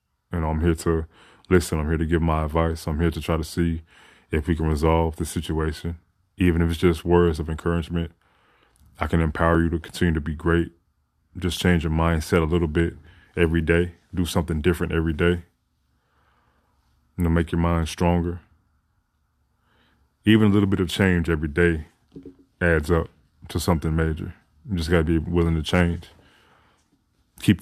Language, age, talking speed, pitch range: English, 20-39, 175 wpm, 80-90 Hz